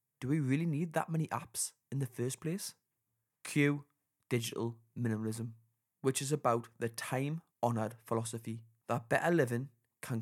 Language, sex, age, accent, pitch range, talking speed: English, male, 20-39, British, 115-130 Hz, 140 wpm